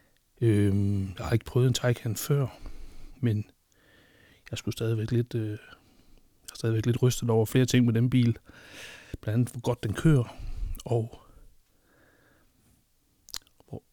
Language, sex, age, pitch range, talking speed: English, male, 60-79, 110-130 Hz, 130 wpm